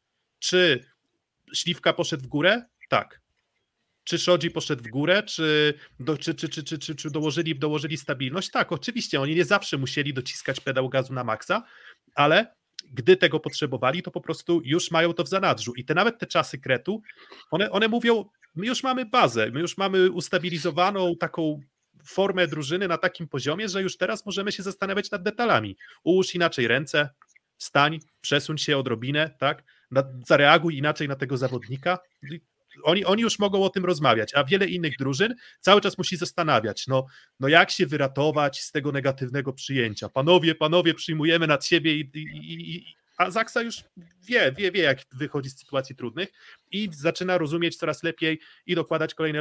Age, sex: 30-49, male